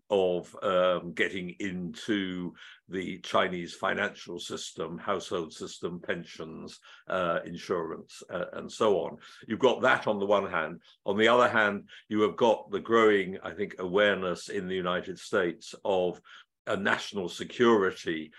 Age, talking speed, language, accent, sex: 60-79, 145 wpm, English, British, male